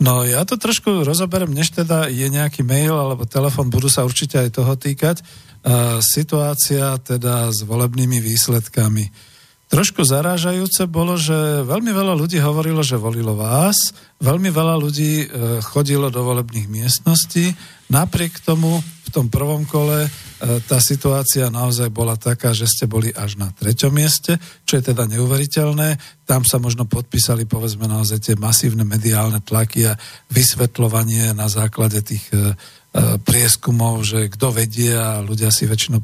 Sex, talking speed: male, 145 wpm